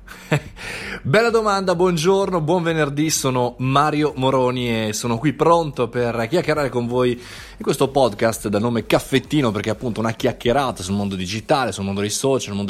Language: Italian